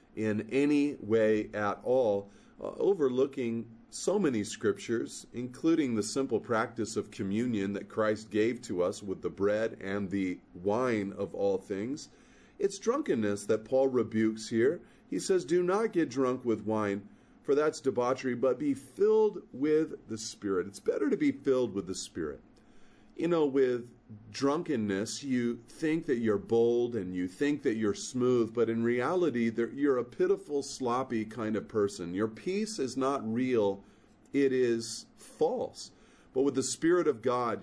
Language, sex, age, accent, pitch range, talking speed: English, male, 40-59, American, 110-140 Hz, 160 wpm